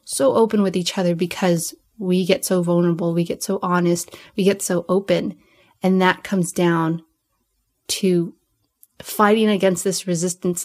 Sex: female